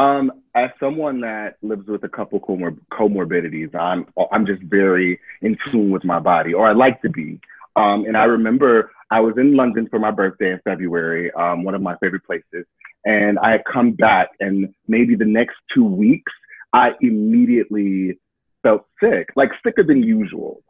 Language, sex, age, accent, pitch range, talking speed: English, male, 30-49, American, 105-165 Hz, 180 wpm